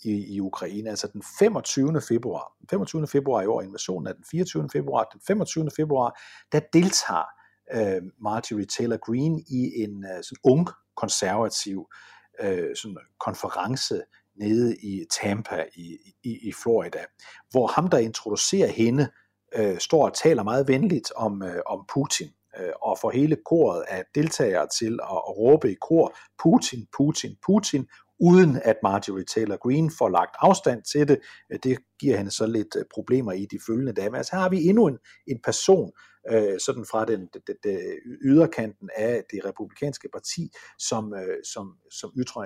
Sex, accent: male, native